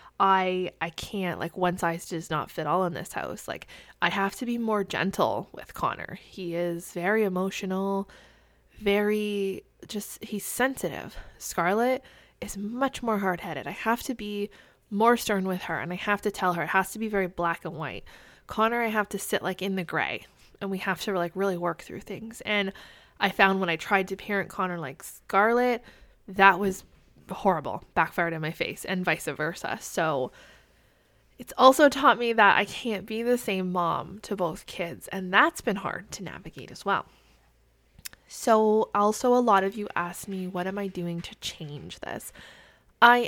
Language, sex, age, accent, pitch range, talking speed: English, female, 20-39, American, 175-210 Hz, 185 wpm